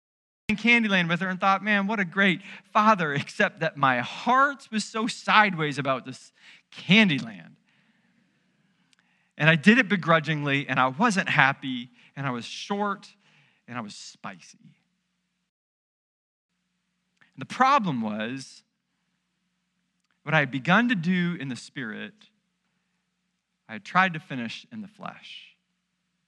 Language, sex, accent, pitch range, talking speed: English, male, American, 150-200 Hz, 130 wpm